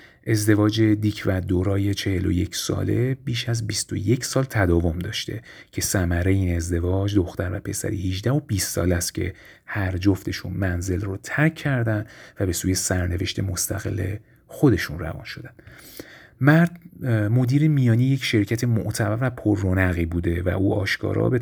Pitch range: 95-115 Hz